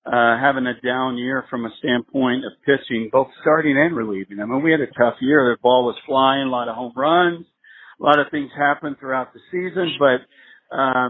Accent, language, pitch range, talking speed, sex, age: American, English, 125-155 Hz, 215 wpm, male, 50-69